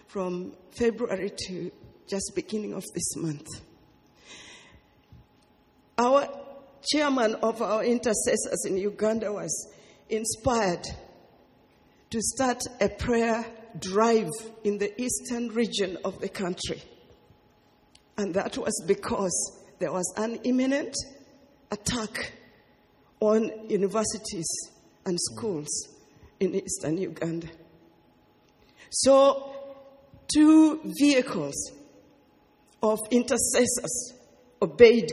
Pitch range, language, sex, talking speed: 195-250 Hz, English, female, 85 wpm